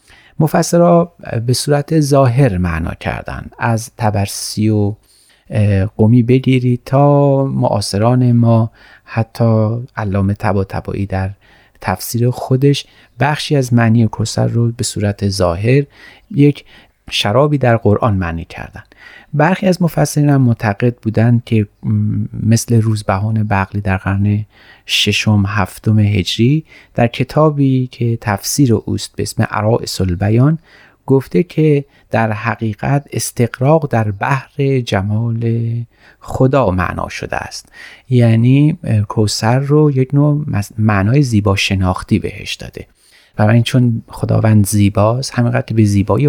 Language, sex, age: Persian, male, 40-59